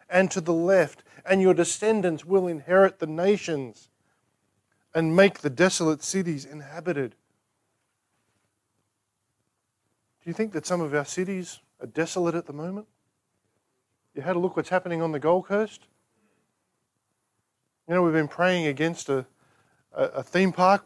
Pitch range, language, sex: 145-190 Hz, English, male